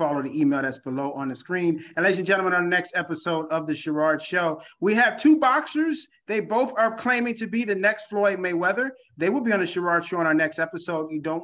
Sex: male